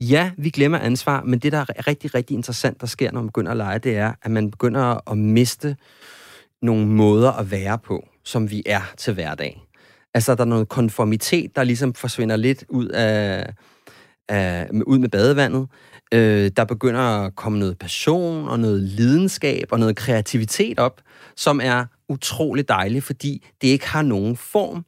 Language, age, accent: Danish, 30-49, native